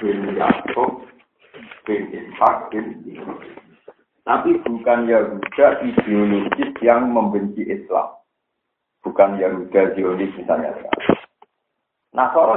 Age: 50-69